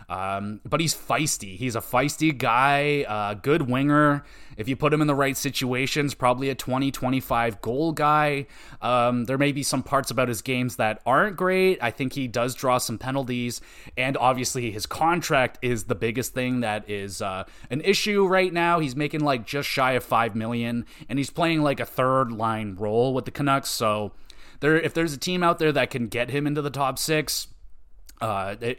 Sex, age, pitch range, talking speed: male, 20-39, 115-145 Hz, 195 wpm